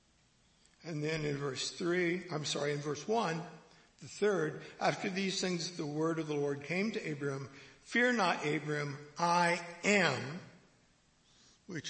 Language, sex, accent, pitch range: English, male, American, 145-235 Hz